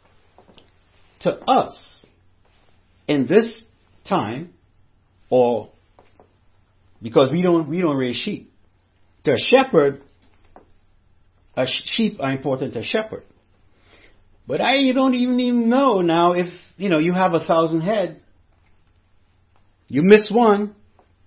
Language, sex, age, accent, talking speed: English, male, 60-79, American, 115 wpm